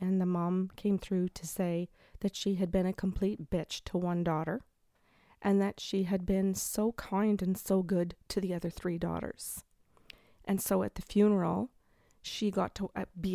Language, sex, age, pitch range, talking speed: English, female, 40-59, 175-200 Hz, 185 wpm